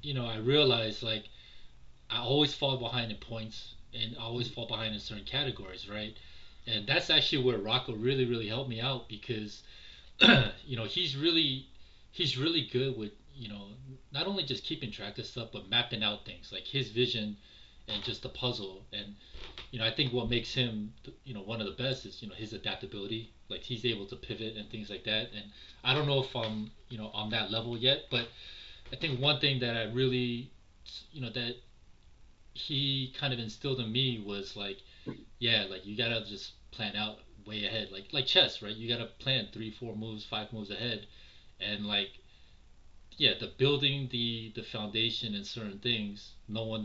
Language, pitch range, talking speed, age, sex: English, 105-125 Hz, 195 wpm, 20-39, male